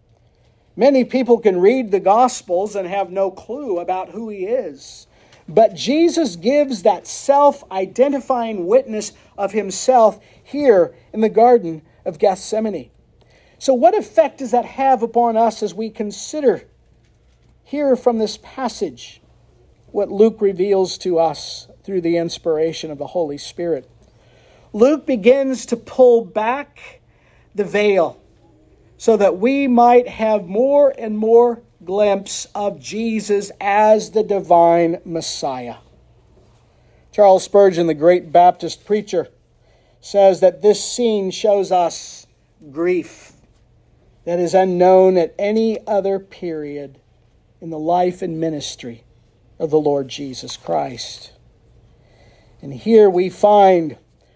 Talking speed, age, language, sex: 125 wpm, 50-69, English, male